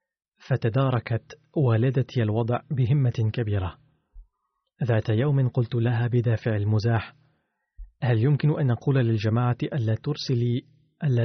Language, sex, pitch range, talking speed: Arabic, male, 110-135 Hz, 100 wpm